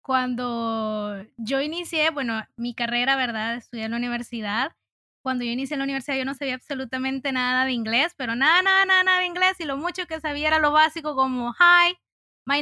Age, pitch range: 20-39, 255-330 Hz